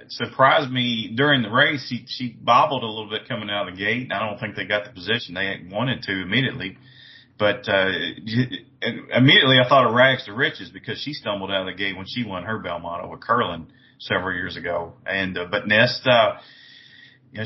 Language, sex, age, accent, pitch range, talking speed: English, male, 30-49, American, 95-125 Hz, 210 wpm